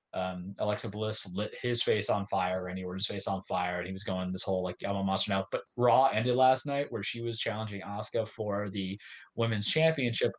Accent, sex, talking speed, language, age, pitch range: American, male, 225 wpm, English, 20-39, 100-125 Hz